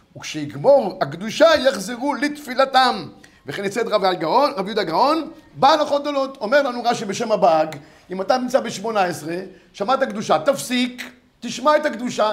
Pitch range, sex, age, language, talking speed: 195-275 Hz, male, 50-69, Hebrew, 145 wpm